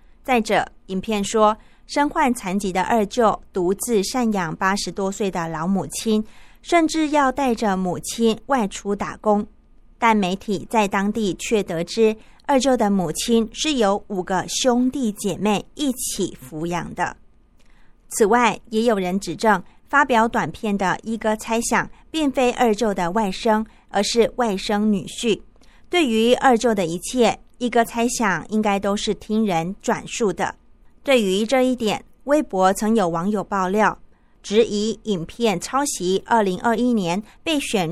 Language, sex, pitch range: Chinese, female, 190-235 Hz